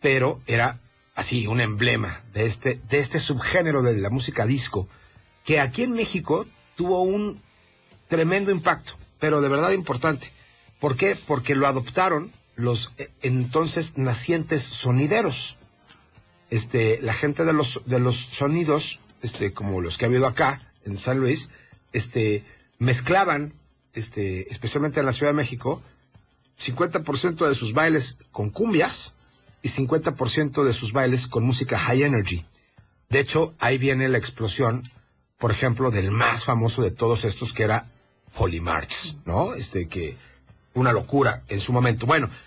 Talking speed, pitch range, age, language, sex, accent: 145 wpm, 115-150 Hz, 40-59, English, male, Mexican